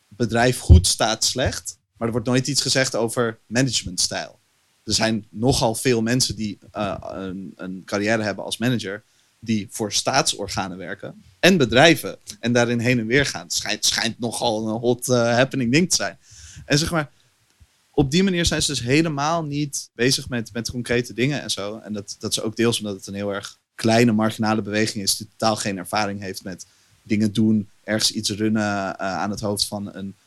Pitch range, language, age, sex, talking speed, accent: 100-125 Hz, Dutch, 30-49, male, 195 wpm, Dutch